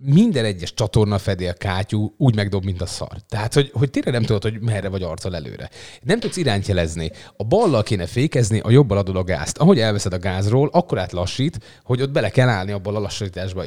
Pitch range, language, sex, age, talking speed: 100-130 Hz, Hungarian, male, 30-49, 220 wpm